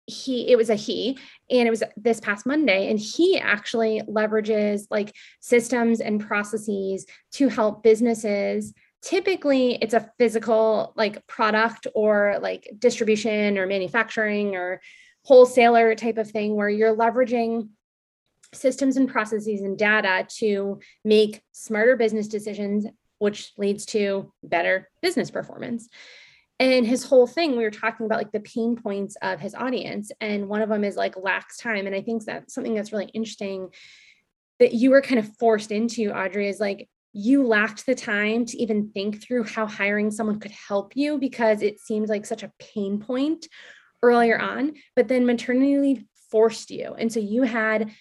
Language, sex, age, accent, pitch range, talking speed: English, female, 20-39, American, 205-240 Hz, 165 wpm